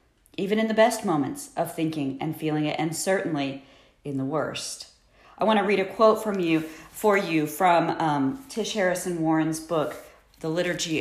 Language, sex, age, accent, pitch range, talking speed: English, female, 40-59, American, 150-195 Hz, 180 wpm